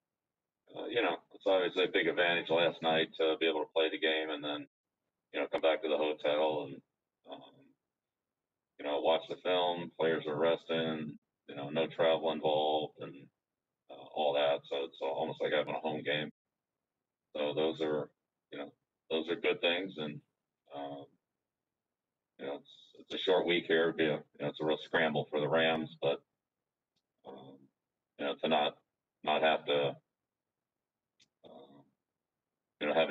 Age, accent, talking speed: 40-59, American, 170 wpm